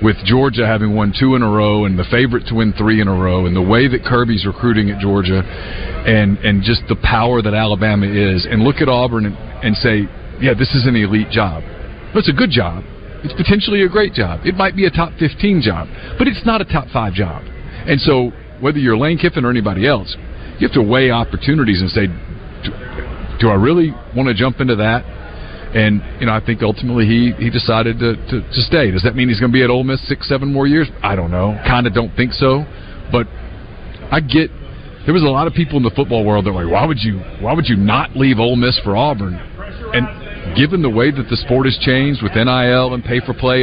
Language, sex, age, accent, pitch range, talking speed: English, male, 50-69, American, 100-130 Hz, 230 wpm